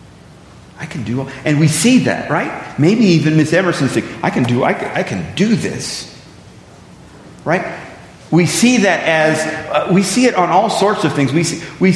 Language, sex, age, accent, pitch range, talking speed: English, male, 40-59, American, 135-170 Hz, 195 wpm